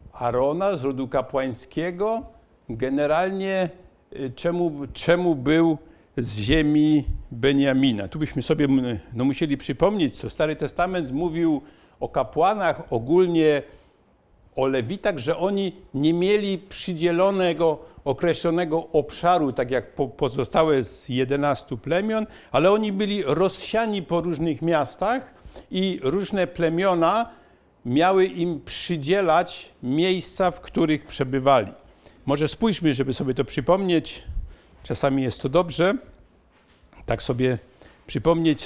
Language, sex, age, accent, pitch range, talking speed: Polish, male, 60-79, native, 140-175 Hz, 110 wpm